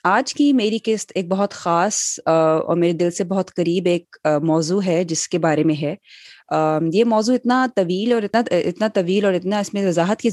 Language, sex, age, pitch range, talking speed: Urdu, female, 20-39, 165-200 Hz, 205 wpm